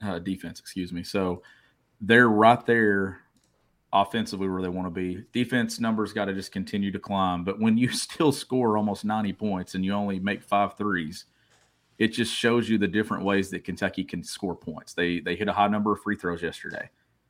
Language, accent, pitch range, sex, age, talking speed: English, American, 95-110 Hz, male, 40-59, 200 wpm